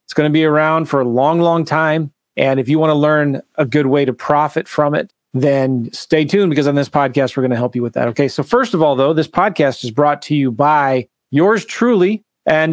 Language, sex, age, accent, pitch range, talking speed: English, male, 30-49, American, 130-160 Hz, 250 wpm